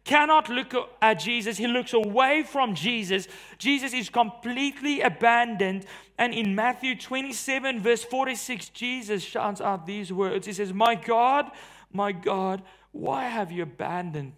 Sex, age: male, 30-49